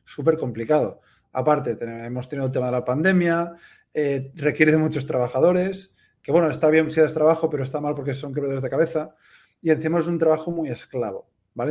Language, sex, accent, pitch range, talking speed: English, male, Spanish, 135-165 Hz, 200 wpm